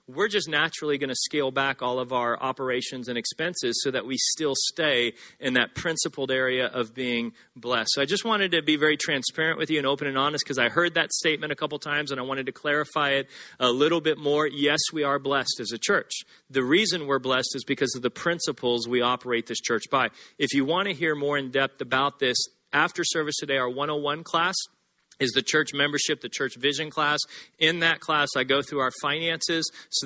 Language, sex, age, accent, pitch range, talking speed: English, male, 40-59, American, 130-150 Hz, 220 wpm